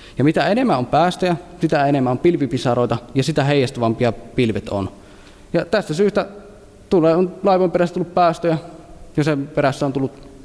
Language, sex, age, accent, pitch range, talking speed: Finnish, male, 20-39, native, 115-165 Hz, 160 wpm